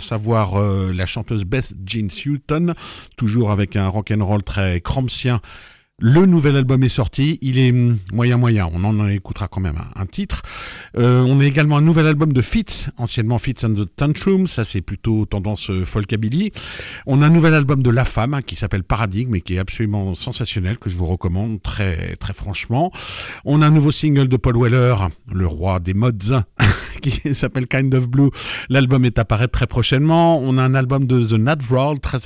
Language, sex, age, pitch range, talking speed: French, male, 50-69, 100-135 Hz, 200 wpm